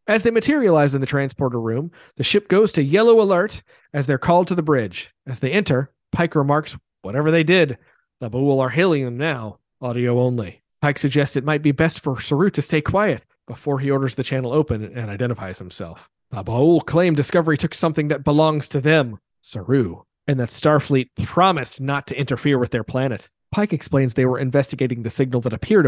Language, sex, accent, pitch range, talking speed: English, male, American, 120-155 Hz, 195 wpm